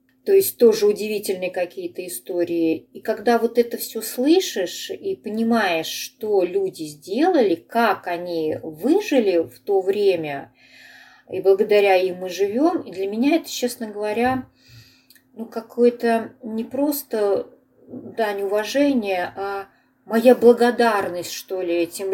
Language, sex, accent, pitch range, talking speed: Russian, female, native, 185-260 Hz, 125 wpm